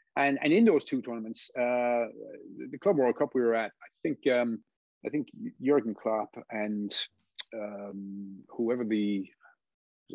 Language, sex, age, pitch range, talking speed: English, male, 30-49, 115-190 Hz, 155 wpm